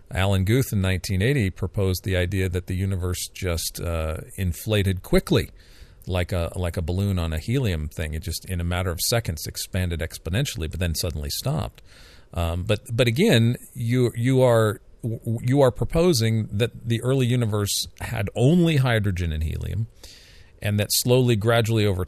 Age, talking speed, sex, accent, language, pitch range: 40-59, 165 wpm, male, American, English, 90-115 Hz